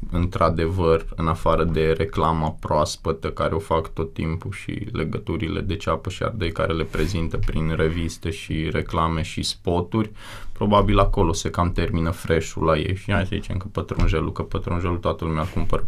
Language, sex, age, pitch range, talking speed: Romanian, male, 20-39, 85-115 Hz, 170 wpm